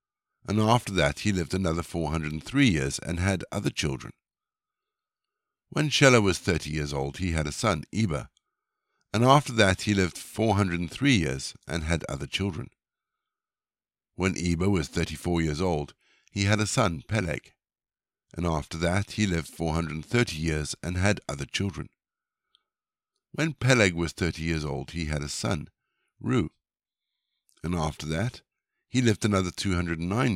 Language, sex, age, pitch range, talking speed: English, male, 60-79, 80-105 Hz, 145 wpm